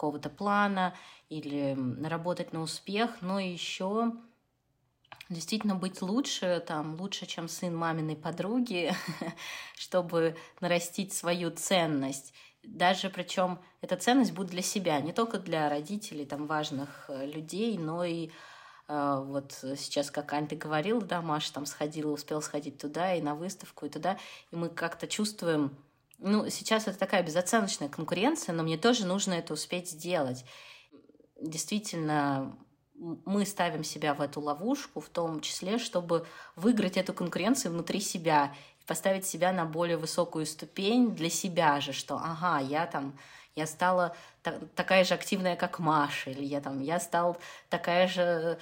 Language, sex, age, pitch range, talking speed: Russian, female, 20-39, 150-190 Hz, 145 wpm